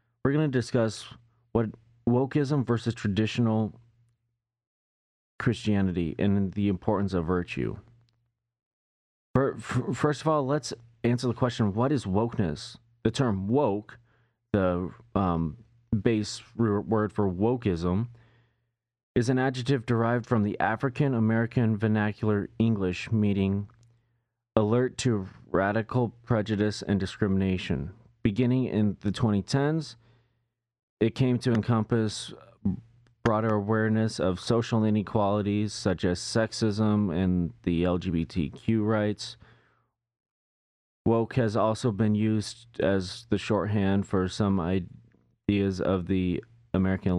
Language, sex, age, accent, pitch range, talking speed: English, male, 30-49, American, 95-115 Hz, 105 wpm